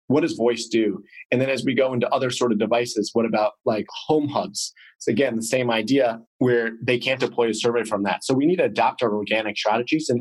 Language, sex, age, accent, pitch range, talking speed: English, male, 30-49, American, 105-130 Hz, 240 wpm